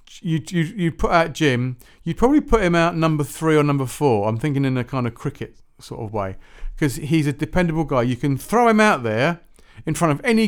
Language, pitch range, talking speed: English, 115-165 Hz, 235 wpm